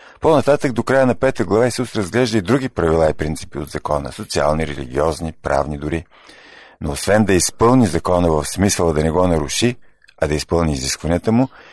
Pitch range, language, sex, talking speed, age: 75-110 Hz, Bulgarian, male, 180 wpm, 50-69